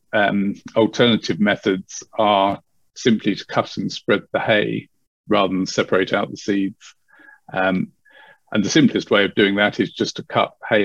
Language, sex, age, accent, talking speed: English, male, 50-69, British, 165 wpm